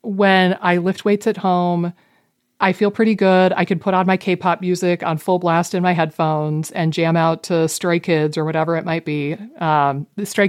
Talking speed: 210 wpm